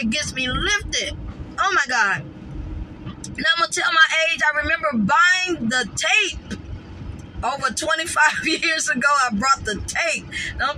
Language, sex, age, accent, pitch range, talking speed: English, female, 20-39, American, 255-325 Hz, 155 wpm